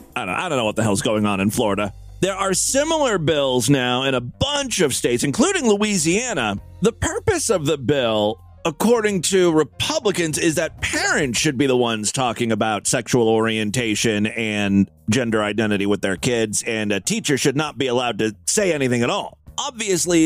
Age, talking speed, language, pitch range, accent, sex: 30-49, 180 wpm, English, 115-175 Hz, American, male